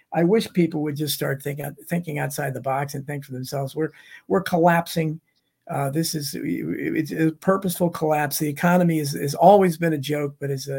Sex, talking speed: male, 205 wpm